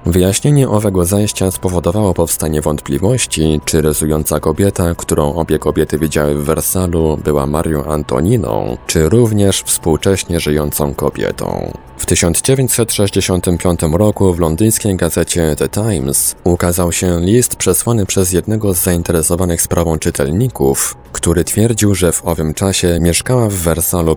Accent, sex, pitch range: native, male, 75-95 Hz